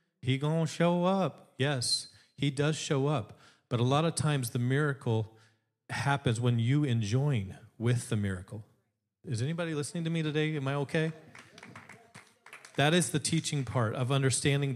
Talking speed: 160 wpm